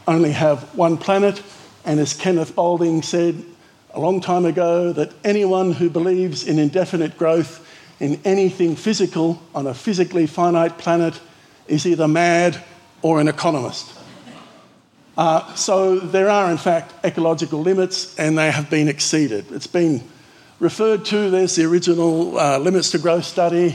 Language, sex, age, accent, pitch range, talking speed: English, male, 50-69, Australian, 145-175 Hz, 150 wpm